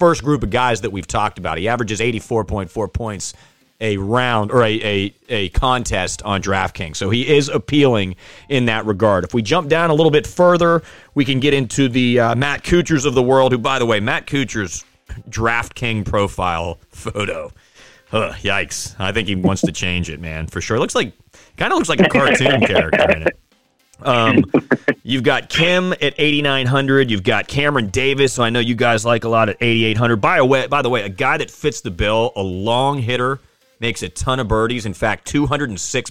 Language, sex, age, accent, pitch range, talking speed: English, male, 30-49, American, 105-135 Hz, 205 wpm